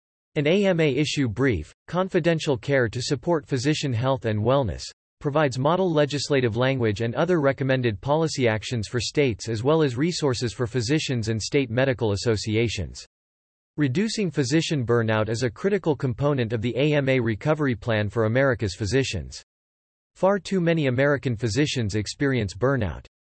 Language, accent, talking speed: English, American, 140 wpm